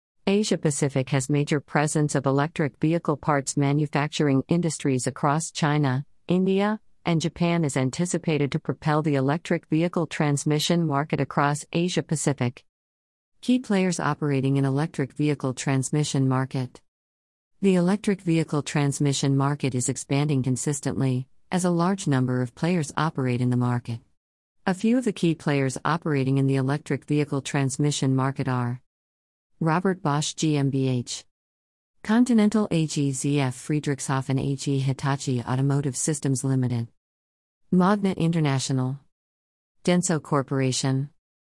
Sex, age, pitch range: female, 50-69, 125-160 Hz